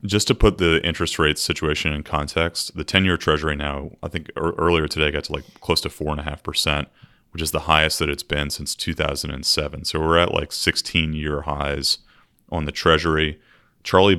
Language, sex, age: English, male, 30-49